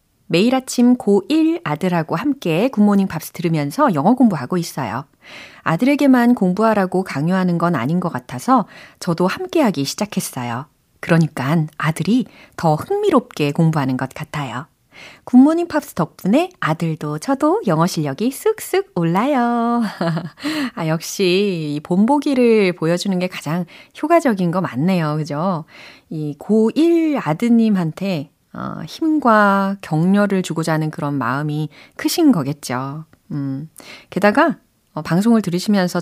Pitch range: 155-240 Hz